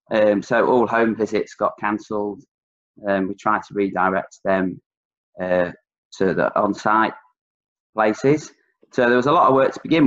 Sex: male